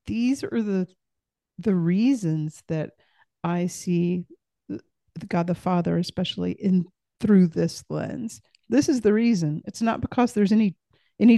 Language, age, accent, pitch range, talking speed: English, 40-59, American, 170-205 Hz, 150 wpm